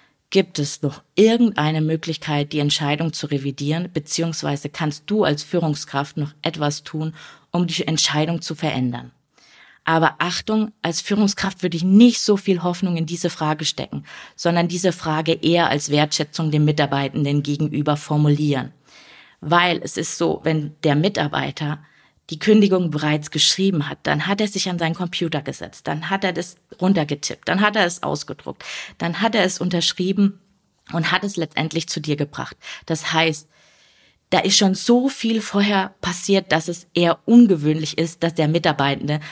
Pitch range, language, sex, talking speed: 150-180 Hz, German, female, 160 wpm